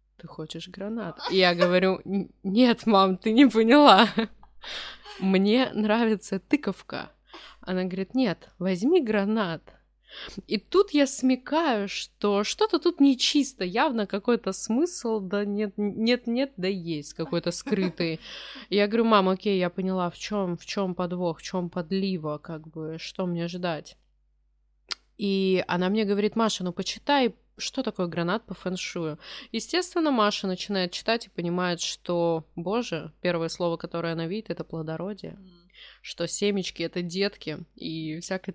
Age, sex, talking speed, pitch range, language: 20-39, female, 140 wpm, 170-215 Hz, Russian